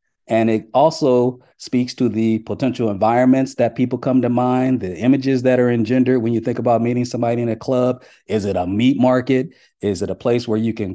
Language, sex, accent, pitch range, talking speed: English, male, American, 115-140 Hz, 215 wpm